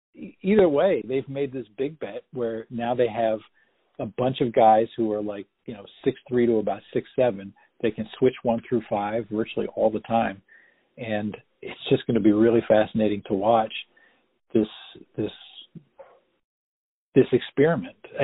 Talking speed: 160 wpm